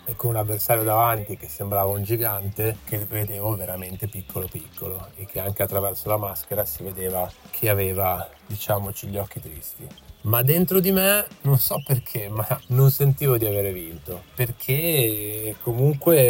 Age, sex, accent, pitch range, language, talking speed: 30-49, male, native, 95-120 Hz, Italian, 155 wpm